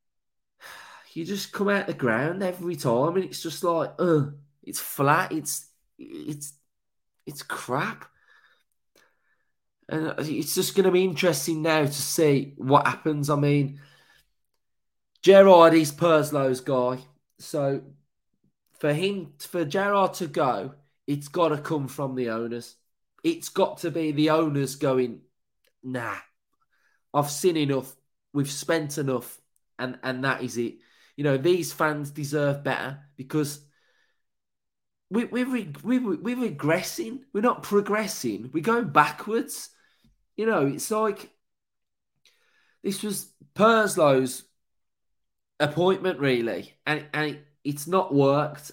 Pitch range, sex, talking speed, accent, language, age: 130-180 Hz, male, 130 wpm, British, English, 20-39